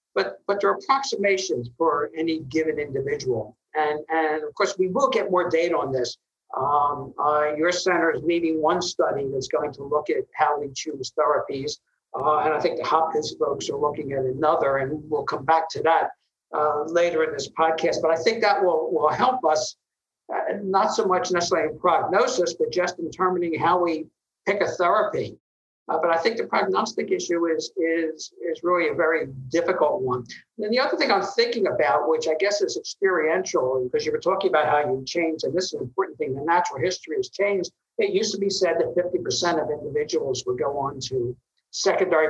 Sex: male